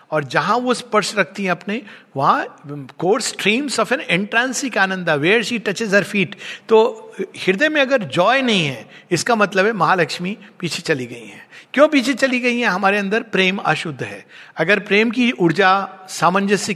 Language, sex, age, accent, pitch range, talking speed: Hindi, male, 60-79, native, 170-225 Hz, 175 wpm